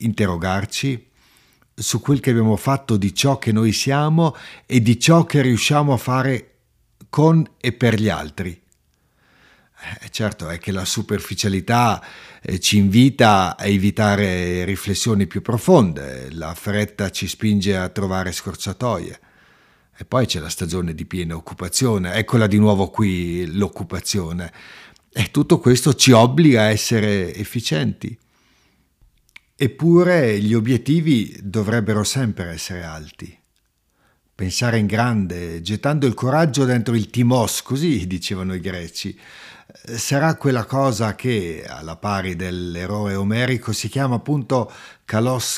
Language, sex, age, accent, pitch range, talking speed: Italian, male, 50-69, native, 95-125 Hz, 130 wpm